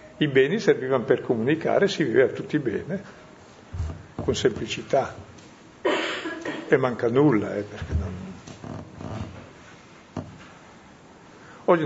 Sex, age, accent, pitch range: male, 50-69, native, 120-160 Hz